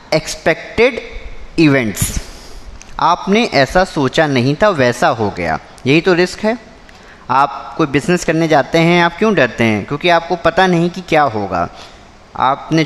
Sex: male